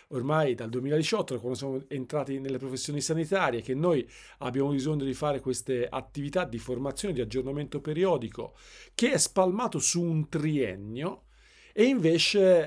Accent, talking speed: native, 140 wpm